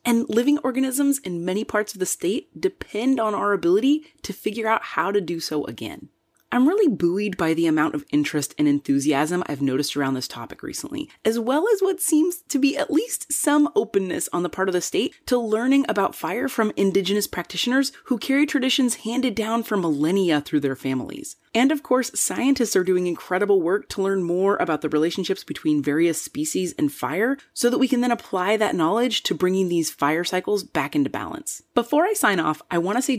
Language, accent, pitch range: English, American, 170-270 Hz